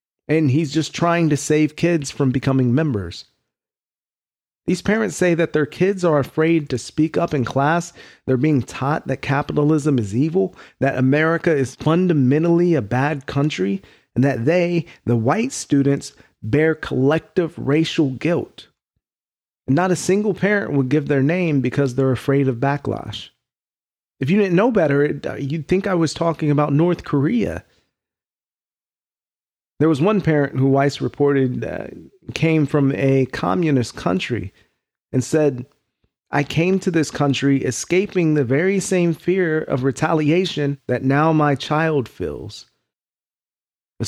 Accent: American